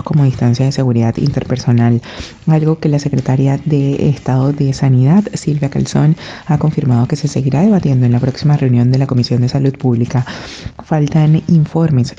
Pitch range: 130-155 Hz